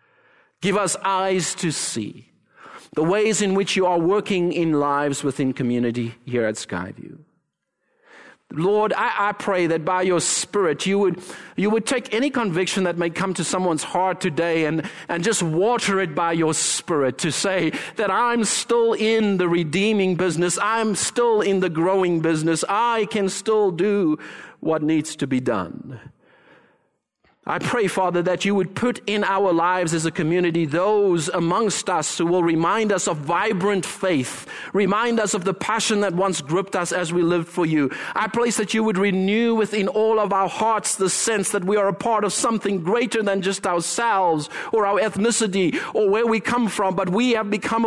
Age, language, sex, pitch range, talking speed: 50-69, English, male, 175-215 Hz, 185 wpm